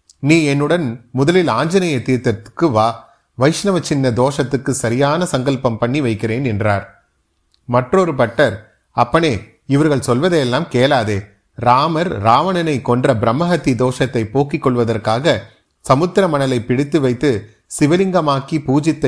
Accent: native